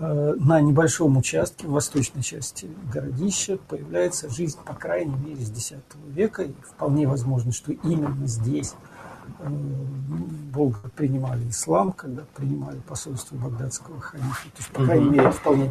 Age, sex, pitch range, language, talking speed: 50-69, male, 135-165 Hz, Russian, 140 wpm